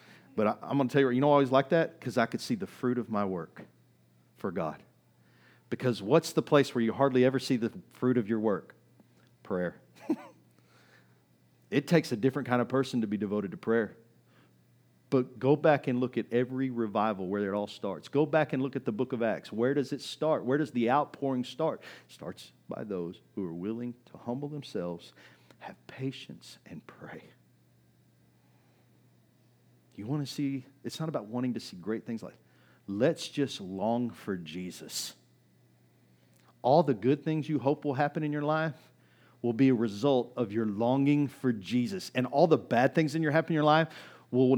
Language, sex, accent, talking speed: English, male, American, 195 wpm